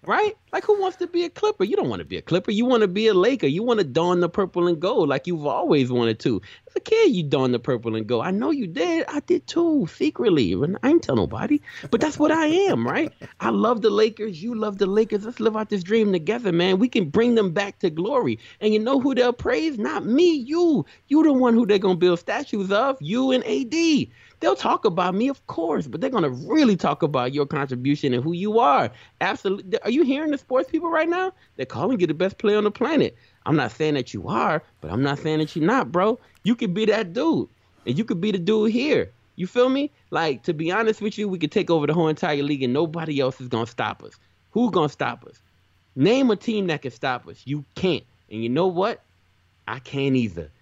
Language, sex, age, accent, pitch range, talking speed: English, male, 30-49, American, 155-255 Hz, 255 wpm